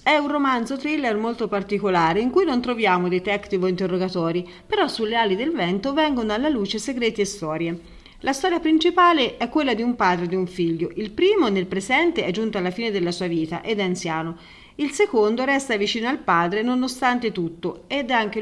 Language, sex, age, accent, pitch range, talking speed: Italian, female, 40-59, native, 185-255 Hz, 200 wpm